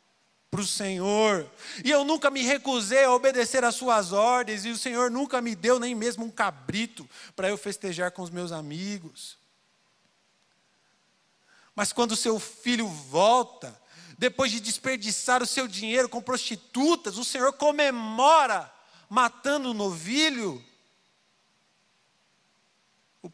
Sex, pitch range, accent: male, 180-235 Hz, Brazilian